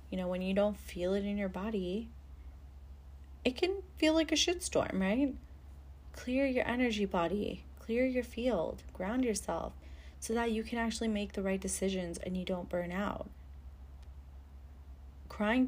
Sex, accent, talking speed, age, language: female, American, 155 wpm, 30-49, English